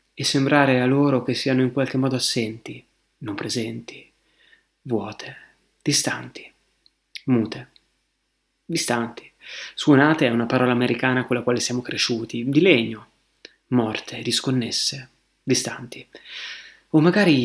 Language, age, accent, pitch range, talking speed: Italian, 30-49, native, 125-150 Hz, 115 wpm